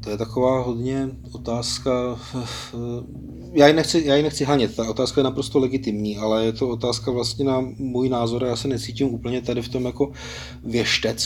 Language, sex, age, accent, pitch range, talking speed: Czech, male, 30-49, native, 105-125 Hz, 185 wpm